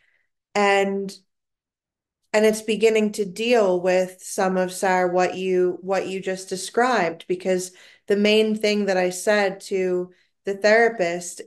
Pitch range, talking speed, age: 180-205 Hz, 135 wpm, 20-39